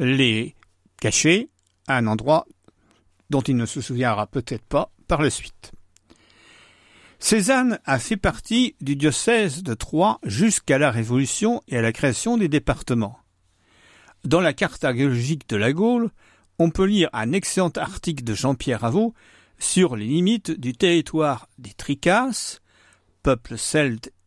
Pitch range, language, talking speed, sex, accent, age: 110-170 Hz, French, 140 wpm, male, French, 60-79